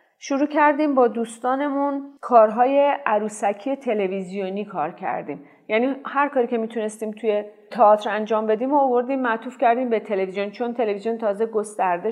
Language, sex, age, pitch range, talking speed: Persian, female, 40-59, 200-260 Hz, 140 wpm